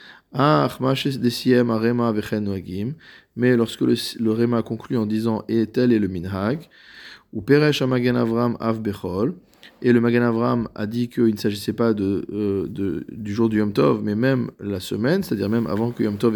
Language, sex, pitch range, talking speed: French, male, 105-130 Hz, 170 wpm